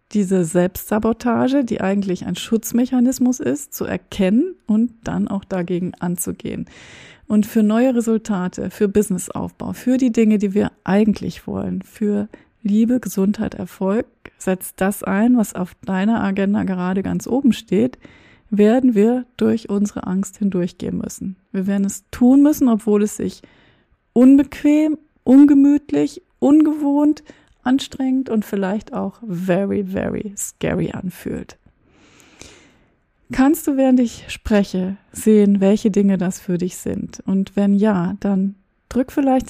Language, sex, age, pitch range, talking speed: German, female, 30-49, 195-250 Hz, 130 wpm